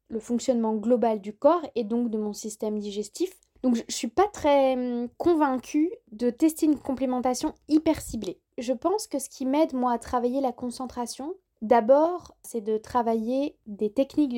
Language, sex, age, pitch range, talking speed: French, female, 20-39, 230-285 Hz, 170 wpm